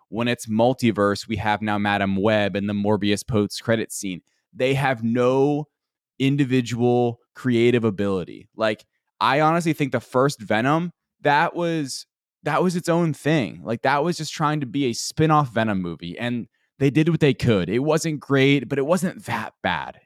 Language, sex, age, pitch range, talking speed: English, male, 20-39, 105-145 Hz, 175 wpm